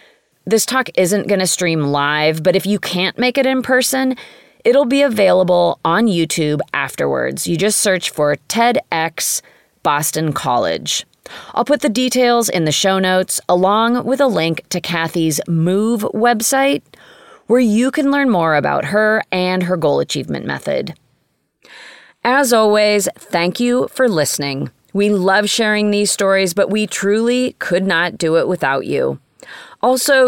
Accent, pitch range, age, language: American, 165-230 Hz, 30-49, English